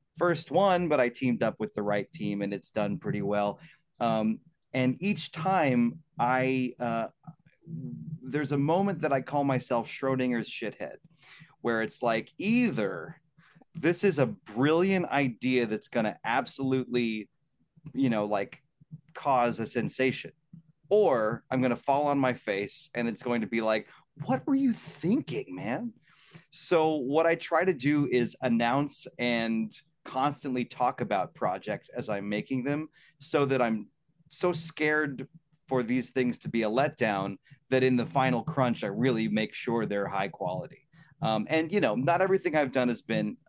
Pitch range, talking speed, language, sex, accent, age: 120-155 Hz, 160 wpm, English, male, American, 30-49